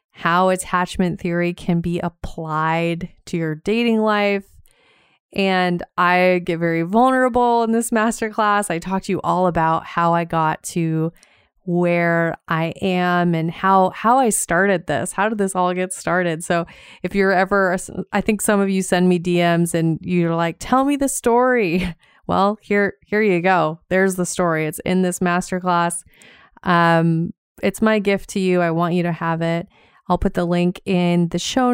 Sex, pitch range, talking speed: female, 170-200 Hz, 175 wpm